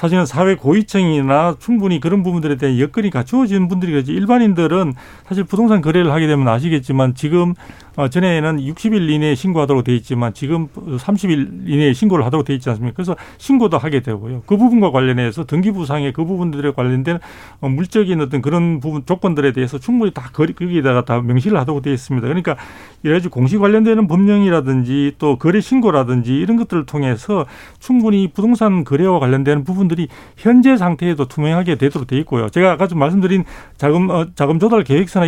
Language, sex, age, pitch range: Korean, male, 40-59, 140-200 Hz